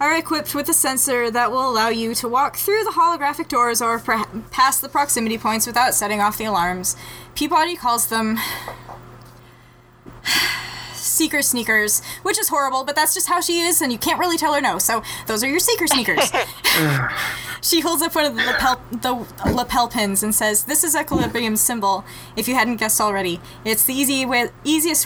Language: English